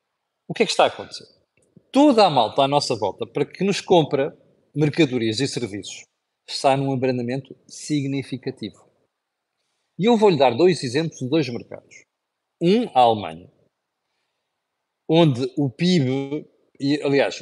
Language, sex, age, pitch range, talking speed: Portuguese, male, 40-59, 125-170 Hz, 140 wpm